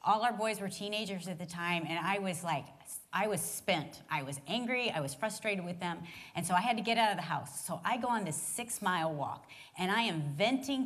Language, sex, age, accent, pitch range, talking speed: English, female, 30-49, American, 165-235 Hz, 245 wpm